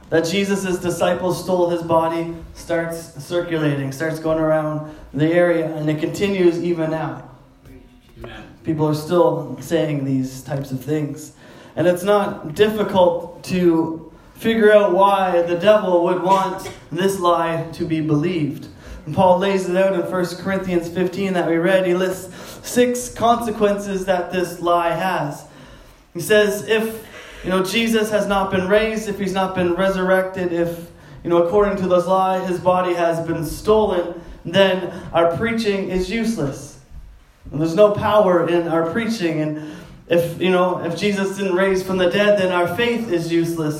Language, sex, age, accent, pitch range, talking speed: English, male, 20-39, American, 165-190 Hz, 160 wpm